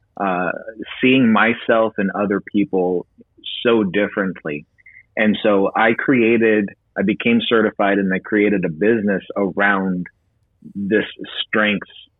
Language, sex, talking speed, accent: English, male, 115 wpm, American